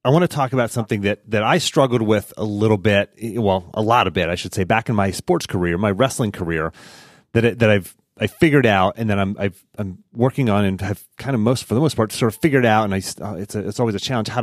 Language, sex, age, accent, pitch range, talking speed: English, male, 30-49, American, 95-120 Hz, 275 wpm